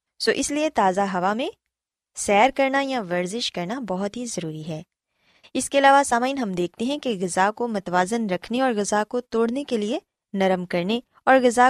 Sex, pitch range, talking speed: female, 185-260 Hz, 195 wpm